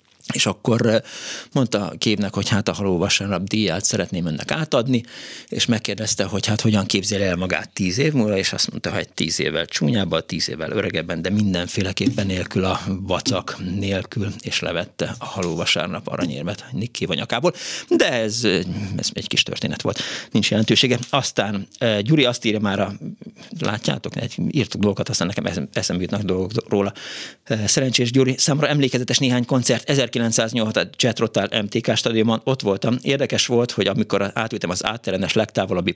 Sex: male